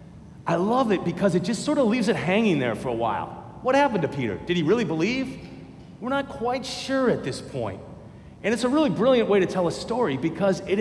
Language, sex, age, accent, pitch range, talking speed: English, male, 40-59, American, 180-240 Hz, 235 wpm